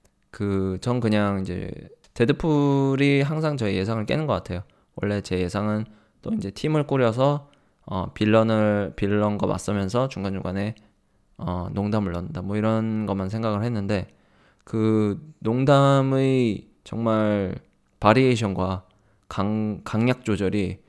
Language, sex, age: Korean, male, 20-39